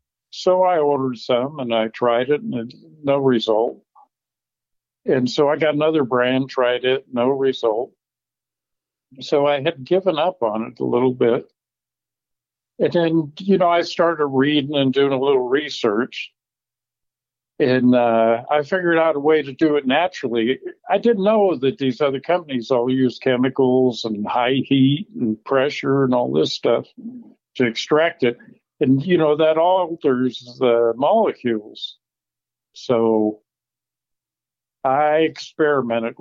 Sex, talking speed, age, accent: male, 145 wpm, 60-79, American